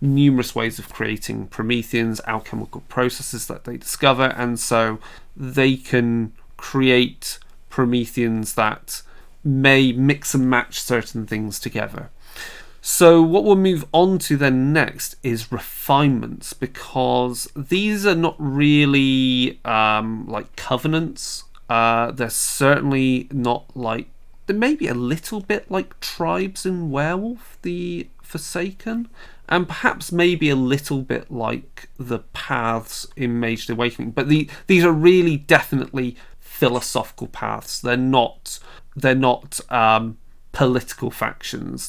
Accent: British